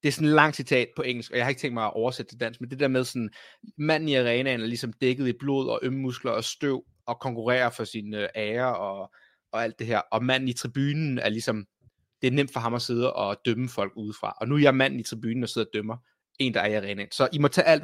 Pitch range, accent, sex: 120-150 Hz, native, male